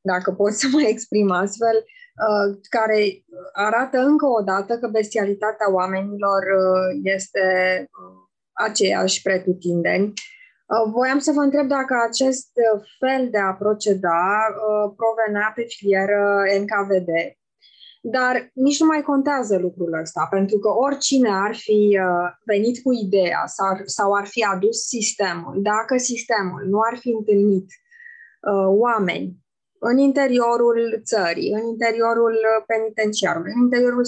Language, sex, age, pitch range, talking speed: Romanian, female, 20-39, 200-255 Hz, 115 wpm